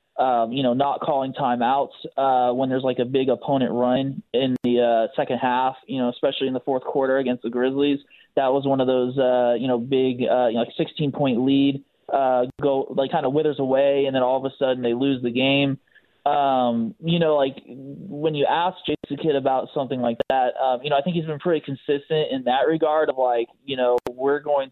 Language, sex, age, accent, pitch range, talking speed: English, male, 20-39, American, 125-145 Hz, 225 wpm